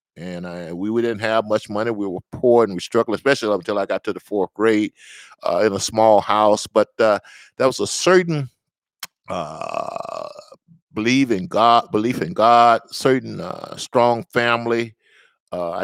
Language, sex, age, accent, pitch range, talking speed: English, male, 50-69, American, 100-115 Hz, 175 wpm